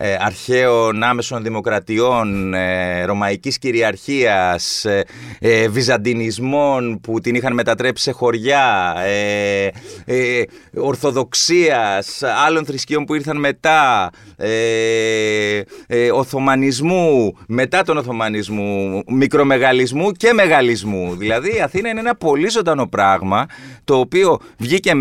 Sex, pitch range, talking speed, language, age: male, 115-145 Hz, 85 wpm, Greek, 30-49